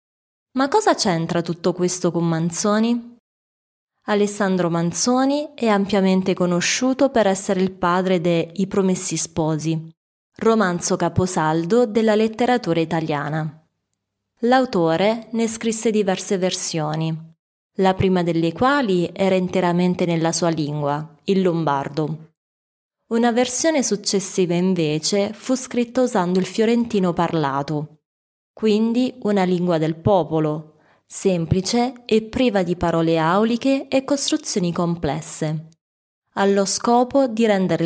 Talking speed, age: 110 wpm, 20-39